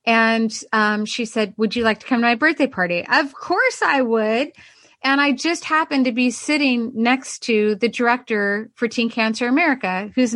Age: 30-49